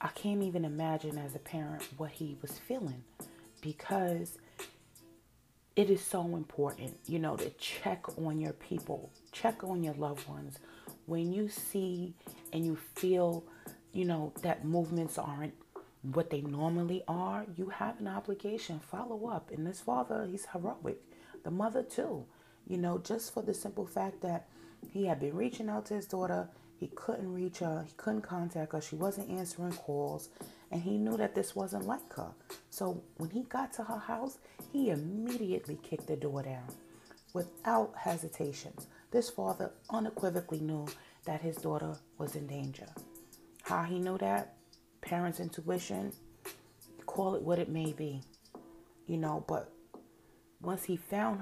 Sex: female